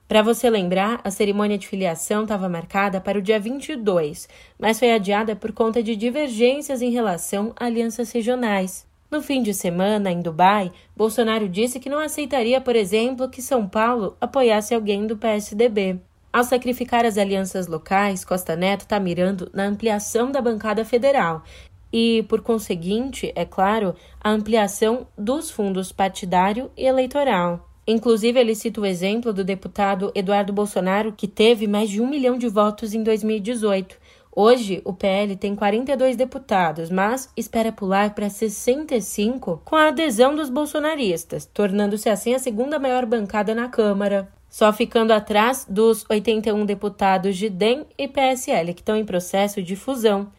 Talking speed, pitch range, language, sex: 155 wpm, 200-245 Hz, Portuguese, female